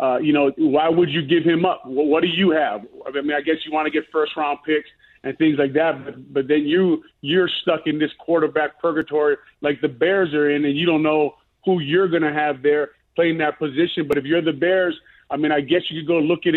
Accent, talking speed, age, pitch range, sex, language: American, 255 wpm, 30-49, 145-165 Hz, male, English